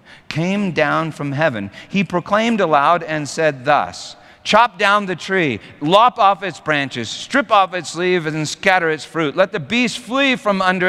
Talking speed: 175 wpm